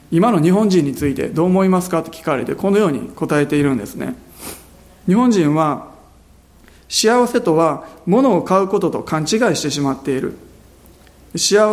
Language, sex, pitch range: Japanese, male, 145-195 Hz